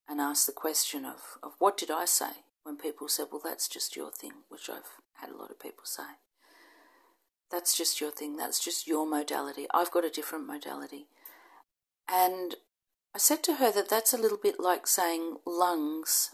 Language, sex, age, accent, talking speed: English, female, 40-59, Australian, 190 wpm